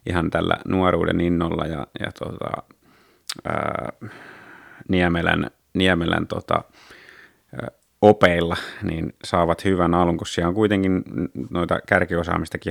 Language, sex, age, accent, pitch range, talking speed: Finnish, male, 30-49, native, 85-100 Hz, 95 wpm